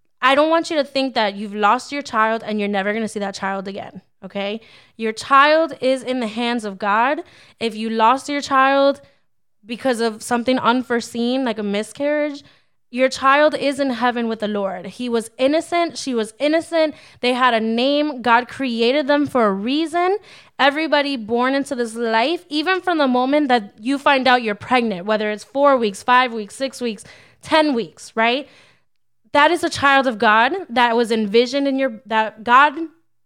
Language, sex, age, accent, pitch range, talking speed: English, female, 10-29, American, 215-275 Hz, 190 wpm